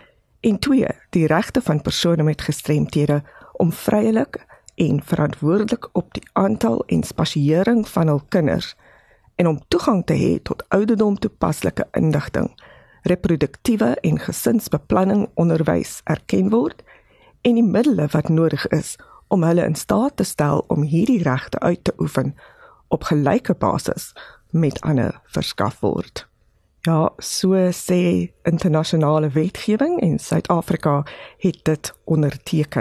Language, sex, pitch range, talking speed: English, female, 150-205 Hz, 125 wpm